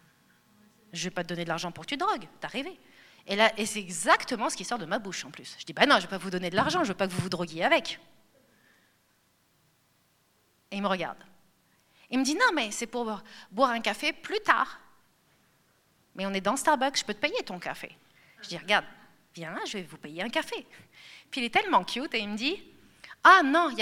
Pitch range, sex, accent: 195-275 Hz, female, French